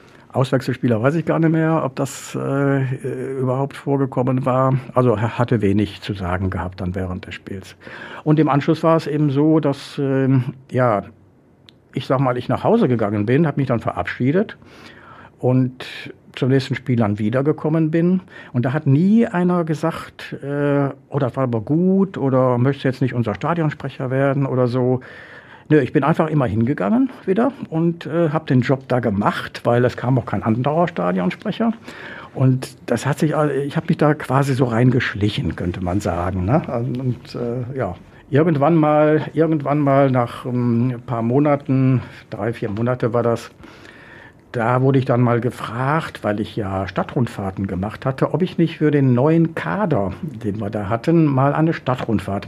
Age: 60-79